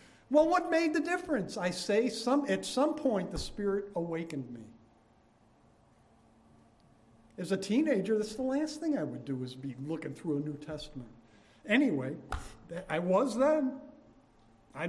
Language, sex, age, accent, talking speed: English, male, 50-69, American, 150 wpm